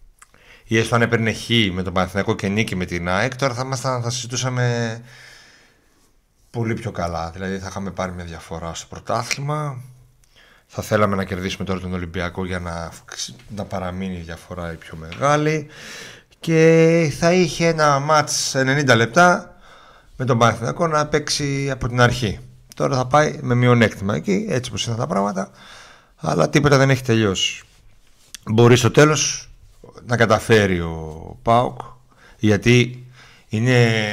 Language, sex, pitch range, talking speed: Greek, male, 95-125 Hz, 150 wpm